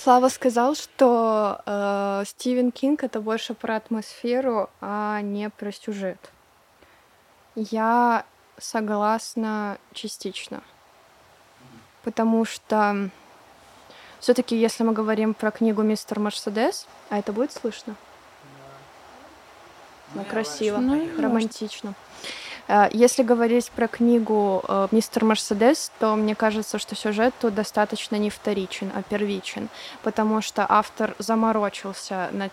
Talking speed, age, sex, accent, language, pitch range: 105 wpm, 20-39, female, native, Russian, 205-230 Hz